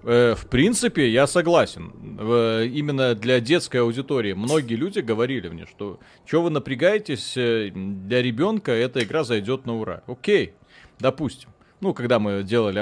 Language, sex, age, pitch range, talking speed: Russian, male, 30-49, 110-140 Hz, 140 wpm